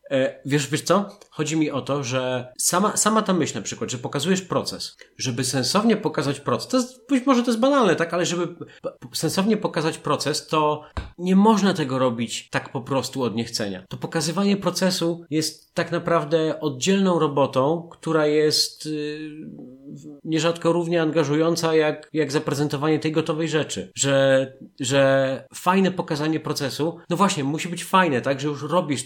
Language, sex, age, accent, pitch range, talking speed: Polish, male, 40-59, native, 135-165 Hz, 155 wpm